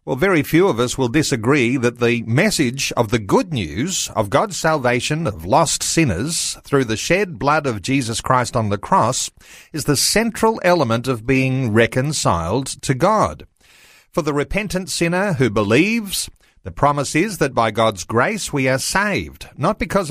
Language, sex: English, male